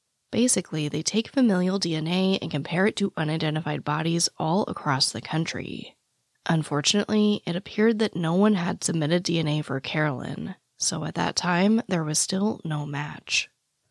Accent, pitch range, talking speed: American, 150-200 Hz, 150 wpm